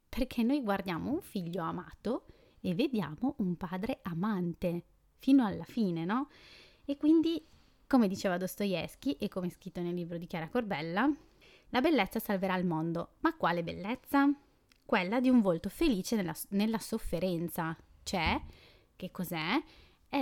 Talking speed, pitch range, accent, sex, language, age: 140 wpm, 175-245 Hz, native, female, Italian, 20-39